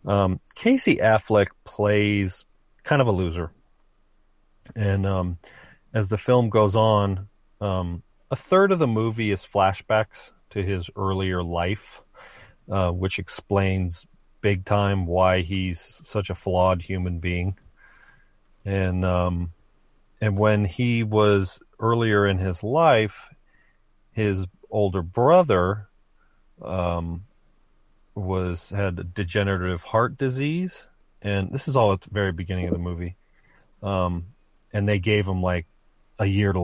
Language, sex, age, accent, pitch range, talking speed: English, male, 40-59, American, 90-105 Hz, 130 wpm